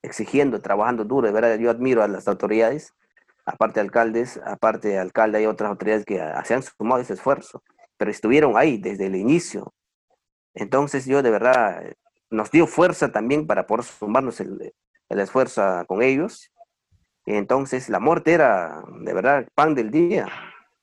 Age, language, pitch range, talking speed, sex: 40-59, Spanish, 105-130 Hz, 165 wpm, male